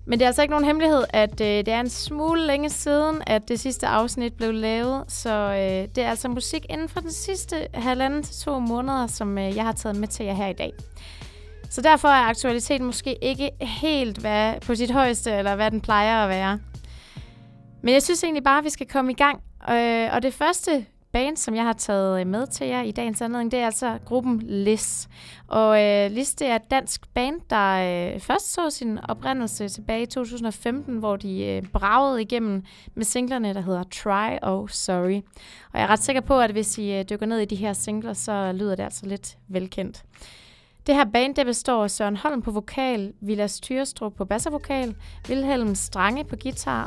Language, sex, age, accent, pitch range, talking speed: English, female, 20-39, Danish, 205-265 Hz, 200 wpm